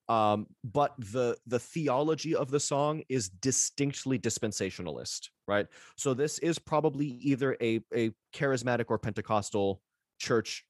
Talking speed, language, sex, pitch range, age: 130 wpm, English, male, 110-135 Hz, 30-49